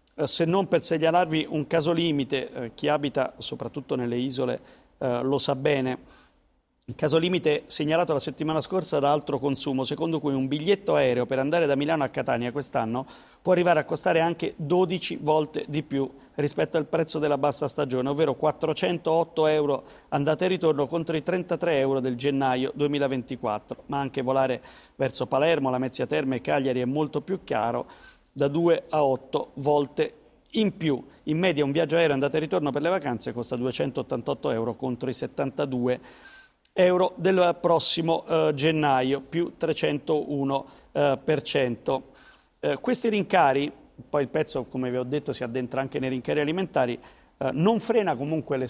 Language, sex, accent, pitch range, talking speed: Italian, male, native, 135-165 Hz, 165 wpm